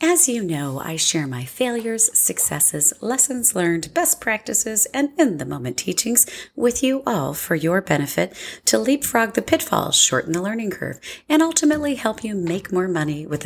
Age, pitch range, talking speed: 40-59, 155-255 Hz, 165 wpm